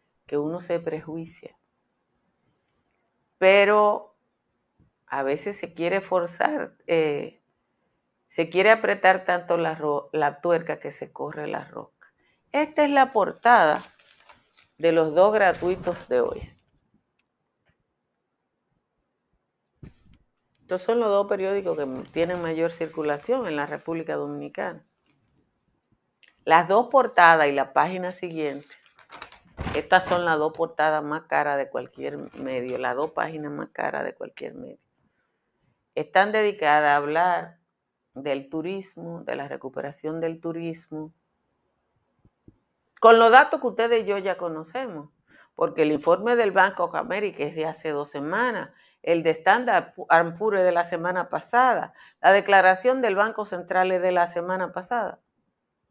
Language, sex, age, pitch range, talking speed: Spanish, female, 50-69, 155-195 Hz, 130 wpm